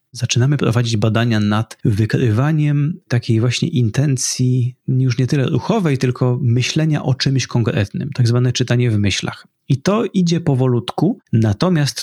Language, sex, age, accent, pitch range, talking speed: Polish, male, 30-49, native, 115-140 Hz, 135 wpm